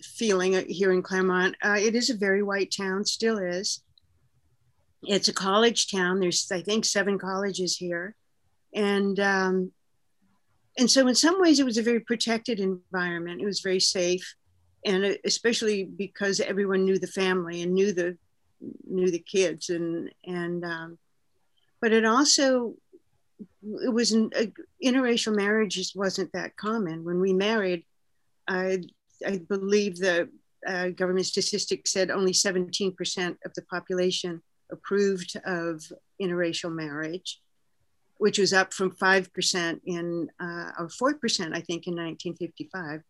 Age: 50-69